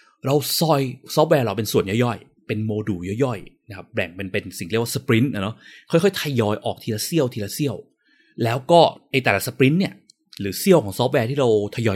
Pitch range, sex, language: 105-160 Hz, male, Thai